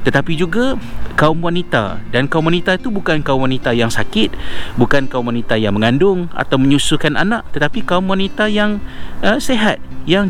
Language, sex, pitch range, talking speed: Malay, male, 120-170 Hz, 165 wpm